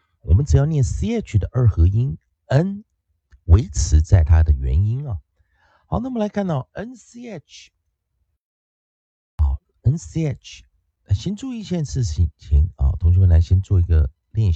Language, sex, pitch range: Chinese, male, 80-120 Hz